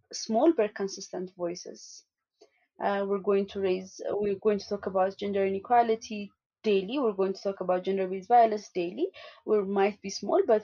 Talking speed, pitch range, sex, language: 170 wpm, 195-225 Hz, female, English